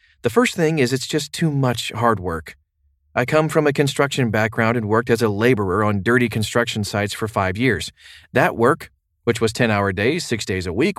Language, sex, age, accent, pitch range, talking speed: English, male, 30-49, American, 100-135 Hz, 205 wpm